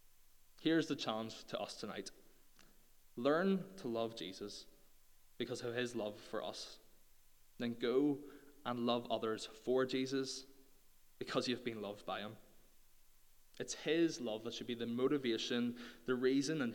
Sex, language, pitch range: male, English, 110-130 Hz